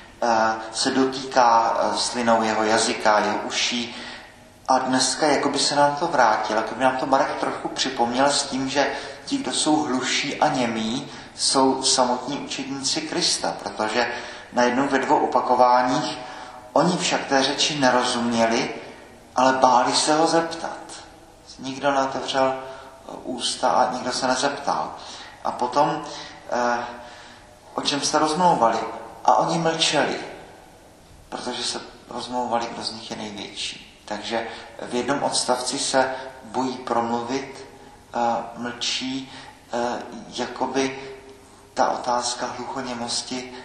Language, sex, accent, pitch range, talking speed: Czech, male, native, 120-135 Hz, 120 wpm